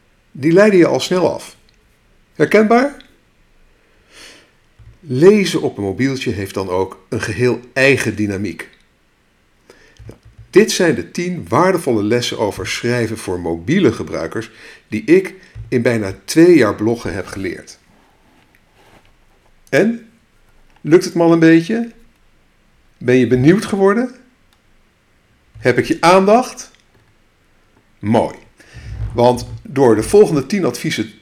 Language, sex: Dutch, male